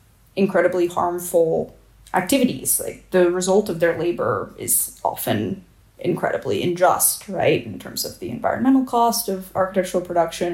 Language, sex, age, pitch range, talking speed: English, female, 20-39, 175-205 Hz, 130 wpm